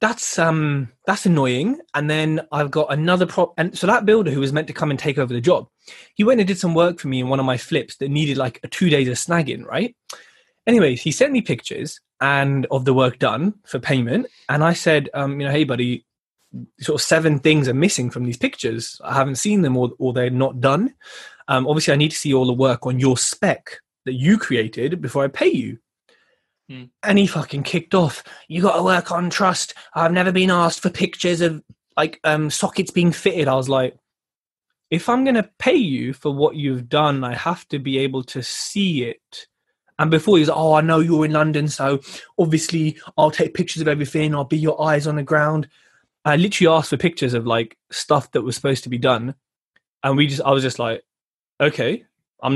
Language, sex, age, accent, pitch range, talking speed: English, male, 20-39, British, 135-175 Hz, 220 wpm